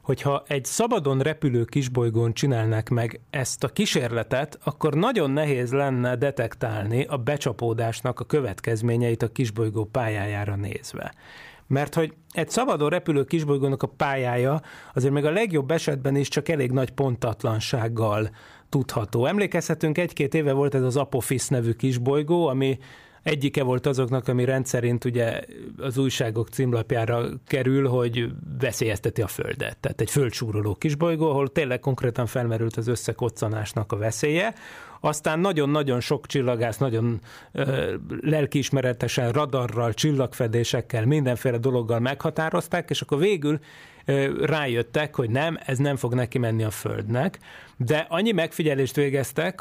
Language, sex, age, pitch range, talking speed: Hungarian, male, 30-49, 120-150 Hz, 130 wpm